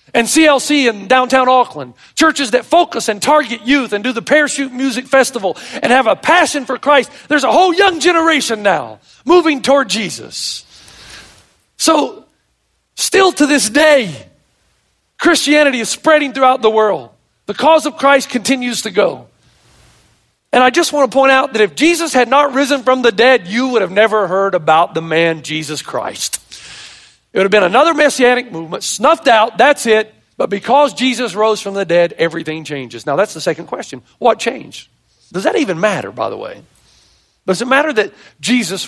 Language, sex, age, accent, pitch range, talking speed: English, male, 40-59, American, 190-280 Hz, 175 wpm